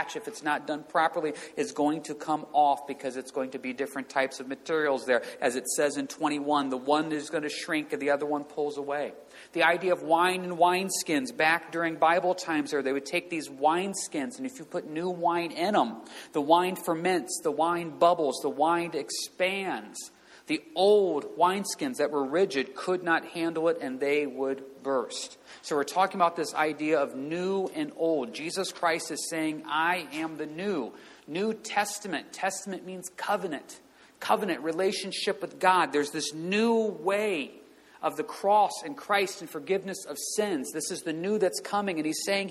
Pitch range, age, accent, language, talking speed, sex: 150-195 Hz, 40-59, American, English, 190 wpm, male